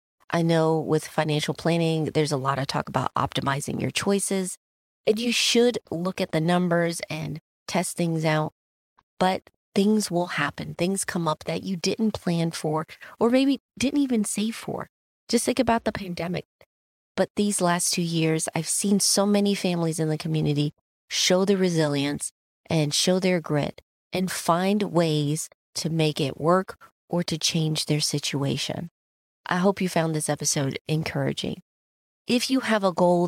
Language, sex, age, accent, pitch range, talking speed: English, female, 30-49, American, 155-195 Hz, 165 wpm